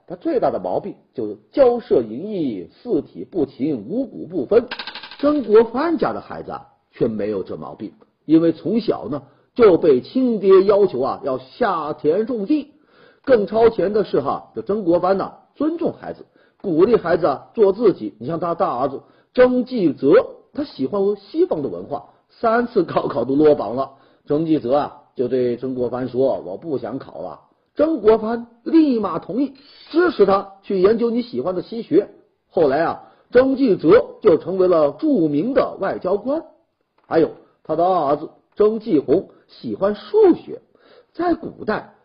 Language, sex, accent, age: Chinese, male, native, 50-69